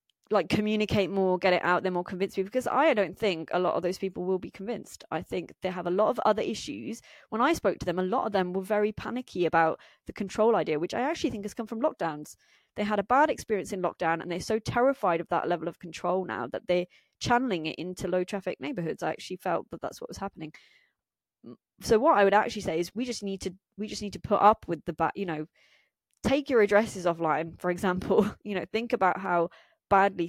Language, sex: English, female